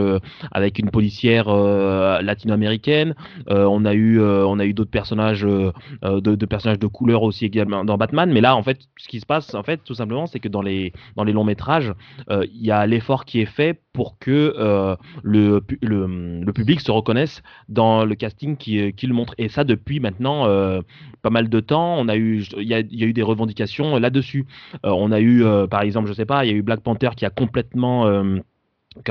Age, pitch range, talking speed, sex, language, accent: 20-39, 100-125 Hz, 220 wpm, male, French, French